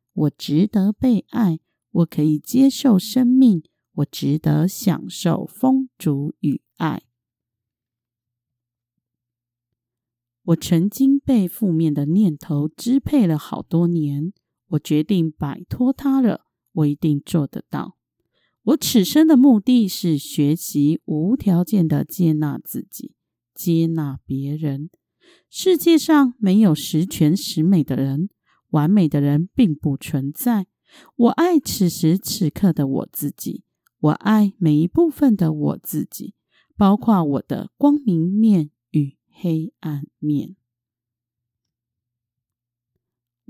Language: Chinese